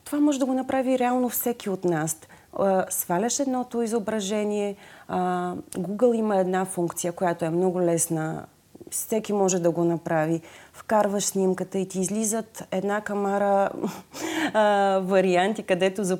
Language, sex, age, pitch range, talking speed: Bulgarian, female, 30-49, 170-225 Hz, 135 wpm